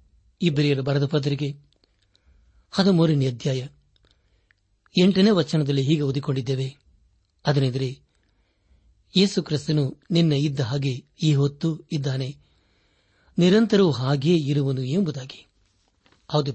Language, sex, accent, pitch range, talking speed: Kannada, male, native, 105-155 Hz, 75 wpm